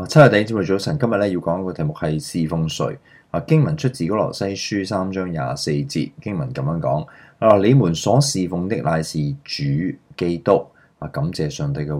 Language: Chinese